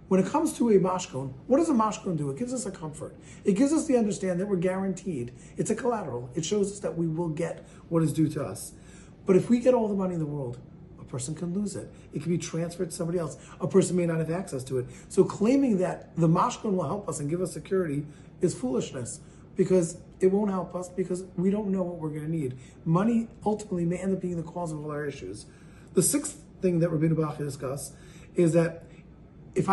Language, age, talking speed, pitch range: English, 40-59, 240 wpm, 150-195 Hz